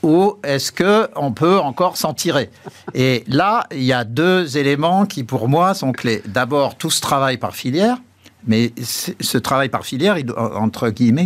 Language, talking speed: French, 185 wpm